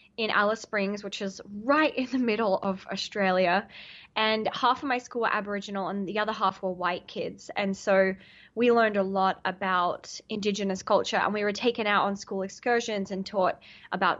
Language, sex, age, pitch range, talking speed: English, female, 20-39, 195-225 Hz, 190 wpm